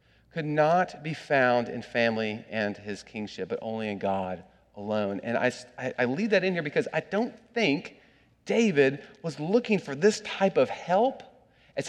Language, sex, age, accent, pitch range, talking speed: English, male, 40-59, American, 130-200 Hz, 170 wpm